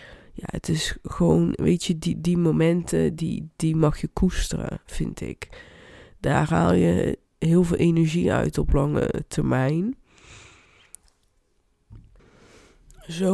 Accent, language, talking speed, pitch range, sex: Dutch, Dutch, 120 wpm, 150-175 Hz, female